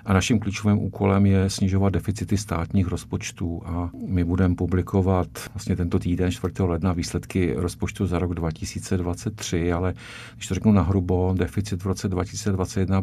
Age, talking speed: 50-69, 145 wpm